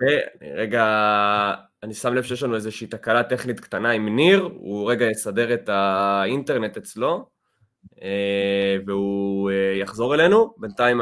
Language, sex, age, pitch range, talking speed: Hebrew, male, 20-39, 105-135 Hz, 125 wpm